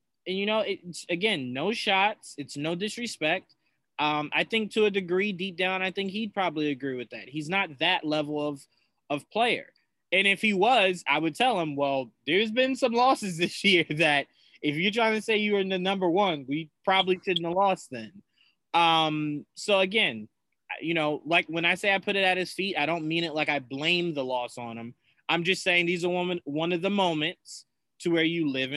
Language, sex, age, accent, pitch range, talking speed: English, male, 20-39, American, 155-205 Hz, 220 wpm